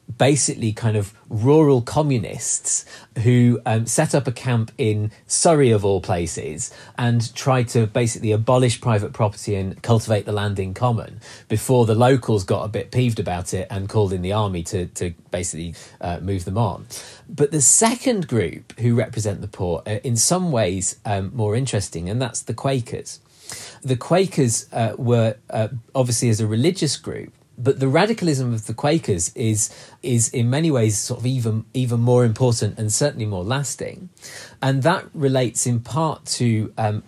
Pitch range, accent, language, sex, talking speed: 110-135 Hz, British, English, male, 175 wpm